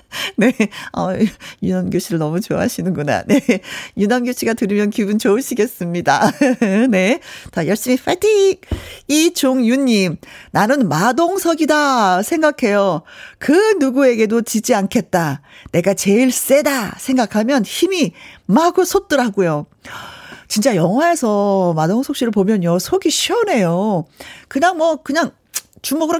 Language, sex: Korean, female